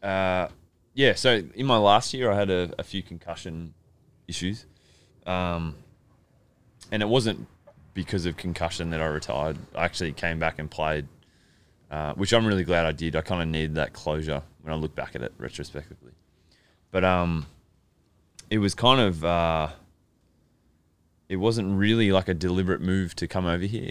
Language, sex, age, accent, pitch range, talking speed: English, male, 20-39, Australian, 80-95 Hz, 170 wpm